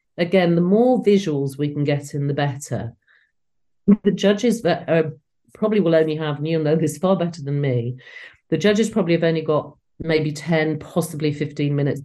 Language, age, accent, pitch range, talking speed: English, 40-59, British, 145-170 Hz, 185 wpm